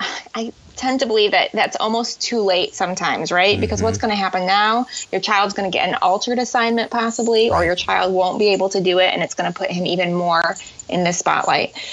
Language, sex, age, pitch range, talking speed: English, female, 20-39, 185-250 Hz, 230 wpm